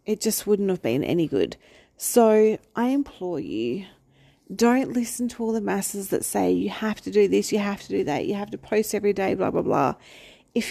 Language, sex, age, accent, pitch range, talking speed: English, female, 30-49, Australian, 180-225 Hz, 220 wpm